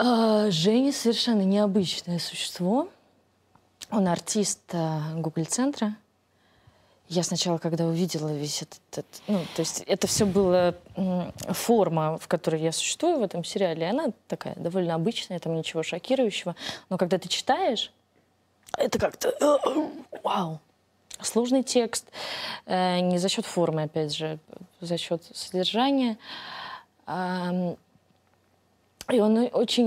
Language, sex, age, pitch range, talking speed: Russian, female, 20-39, 160-220 Hz, 125 wpm